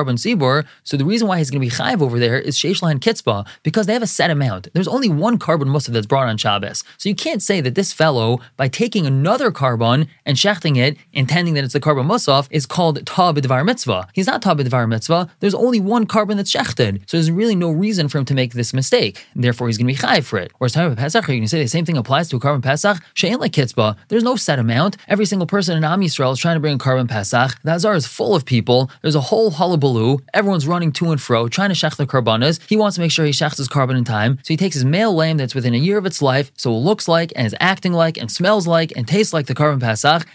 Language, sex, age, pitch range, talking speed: English, male, 20-39, 130-185 Hz, 260 wpm